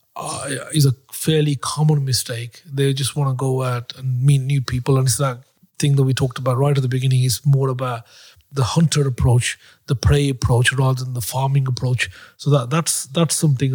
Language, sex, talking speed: English, male, 205 wpm